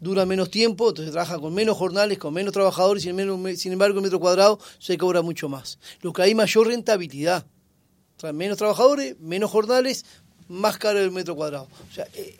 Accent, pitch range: Argentinian, 165-205 Hz